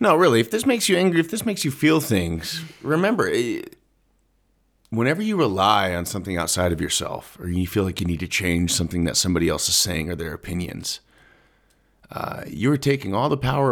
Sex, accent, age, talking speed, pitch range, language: male, American, 30-49, 200 wpm, 90-145 Hz, English